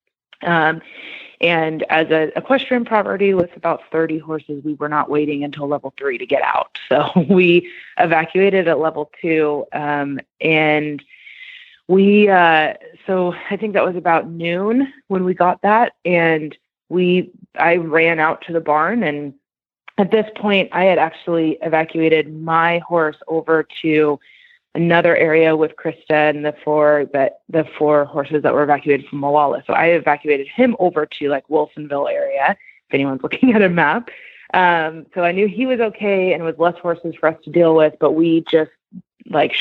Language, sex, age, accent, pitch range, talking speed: English, female, 20-39, American, 150-185 Hz, 170 wpm